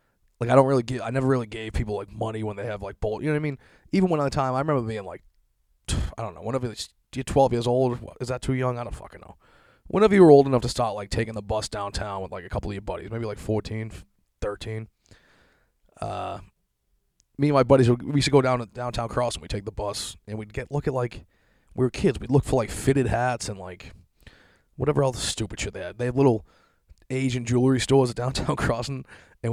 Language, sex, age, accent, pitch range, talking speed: English, male, 20-39, American, 100-130 Hz, 250 wpm